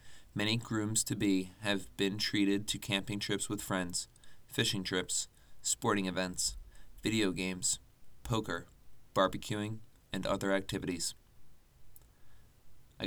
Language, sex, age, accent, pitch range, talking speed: English, male, 20-39, American, 90-105 Hz, 100 wpm